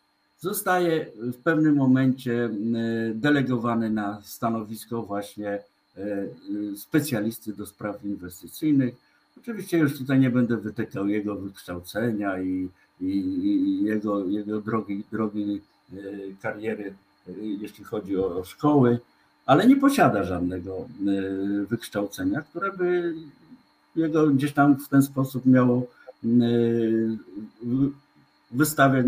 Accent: native